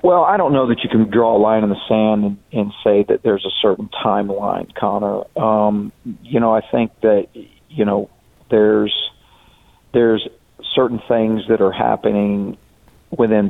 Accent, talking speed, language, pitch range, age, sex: American, 170 wpm, English, 100-115 Hz, 50-69, male